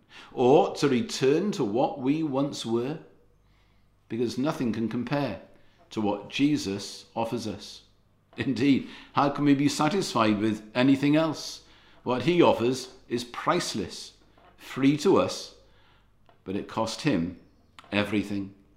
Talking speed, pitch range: 125 wpm, 115-170 Hz